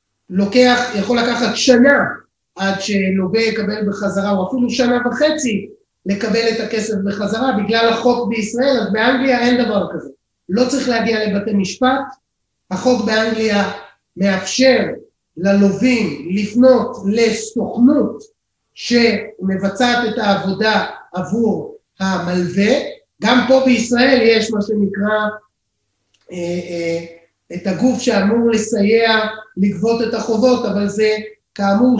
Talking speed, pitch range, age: 105 wpm, 200-245 Hz, 30-49